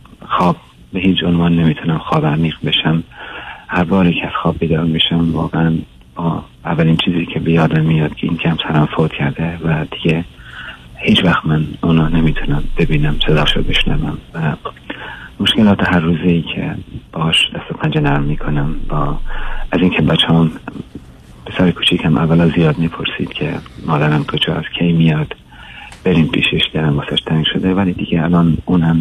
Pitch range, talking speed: 75-85 Hz, 155 wpm